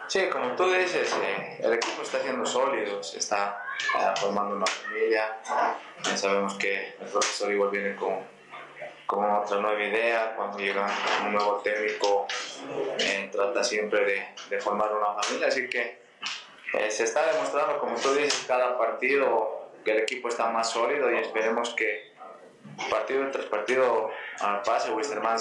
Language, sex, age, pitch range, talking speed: Spanish, male, 20-39, 105-115 Hz, 155 wpm